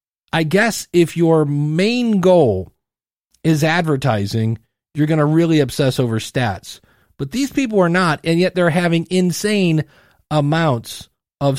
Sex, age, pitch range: male, 40-59, 130-165 Hz